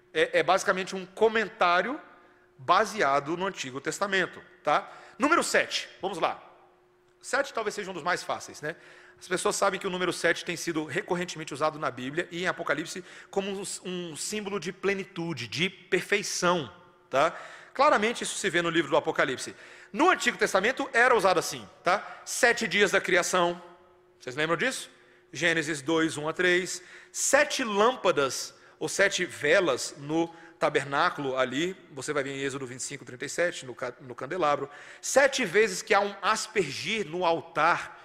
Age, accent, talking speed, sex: 40-59, Brazilian, 155 wpm, male